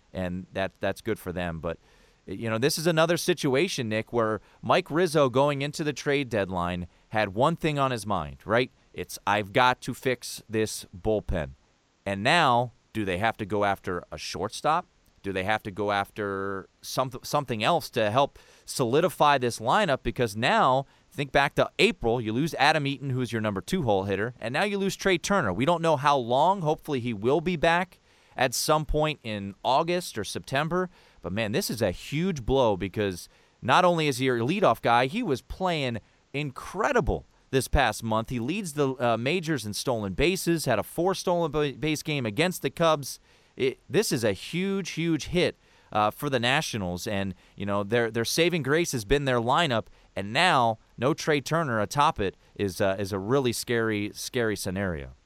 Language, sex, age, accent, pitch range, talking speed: English, male, 30-49, American, 105-155 Hz, 190 wpm